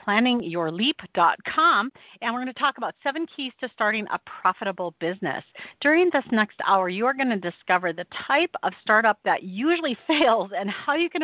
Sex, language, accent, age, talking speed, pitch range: female, English, American, 40-59, 180 wpm, 195-270 Hz